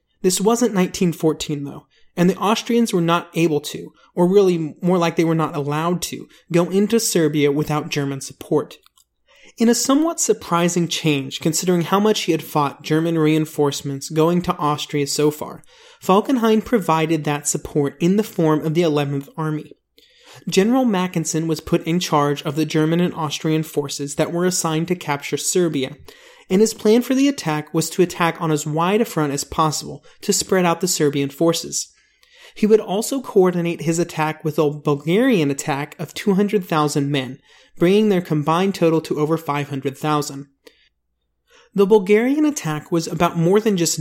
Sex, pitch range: male, 150-195 Hz